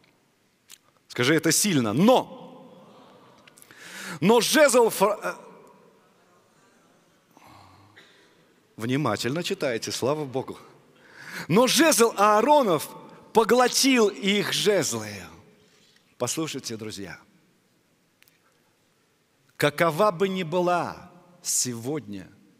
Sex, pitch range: male, 135-215 Hz